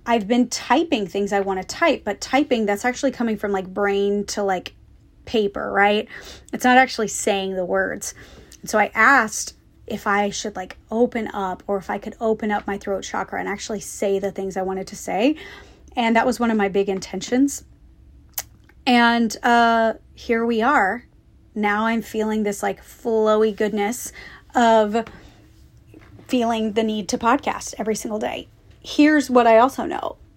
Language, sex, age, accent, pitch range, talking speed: English, female, 30-49, American, 205-245 Hz, 170 wpm